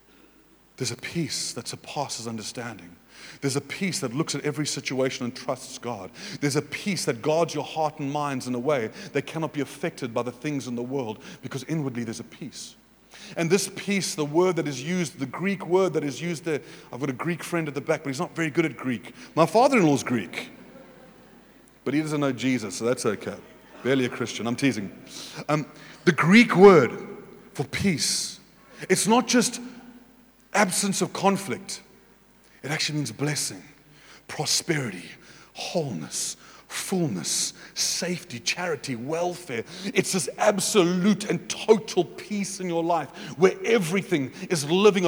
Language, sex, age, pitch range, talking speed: English, male, 30-49, 135-185 Hz, 165 wpm